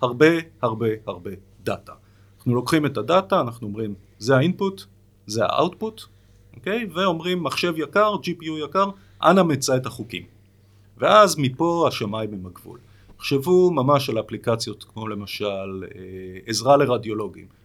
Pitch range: 105-155 Hz